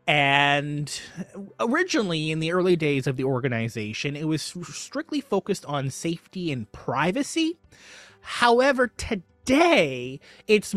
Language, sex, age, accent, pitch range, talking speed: English, male, 30-49, American, 140-200 Hz, 110 wpm